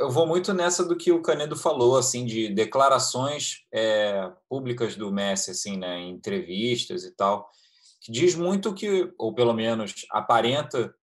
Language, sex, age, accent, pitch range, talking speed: Portuguese, male, 20-39, Brazilian, 115-155 Hz, 170 wpm